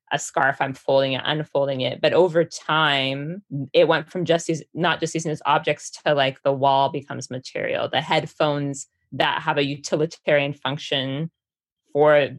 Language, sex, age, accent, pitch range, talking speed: English, female, 20-39, American, 135-155 Hz, 160 wpm